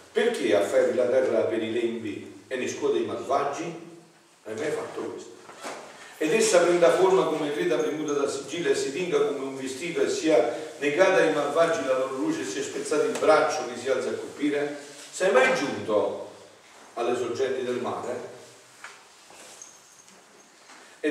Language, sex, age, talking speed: Italian, male, 50-69, 165 wpm